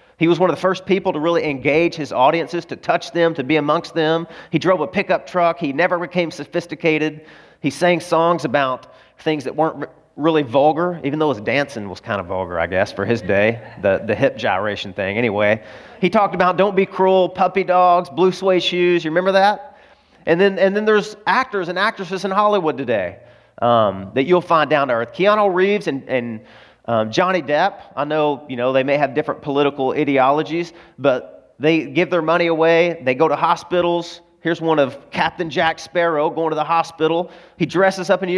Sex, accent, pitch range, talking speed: male, American, 145-180 Hz, 200 wpm